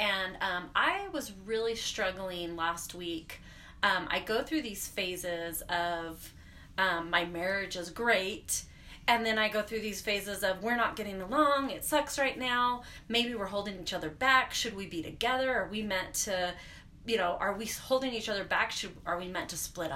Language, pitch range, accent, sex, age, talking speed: English, 175-230 Hz, American, female, 30-49, 190 wpm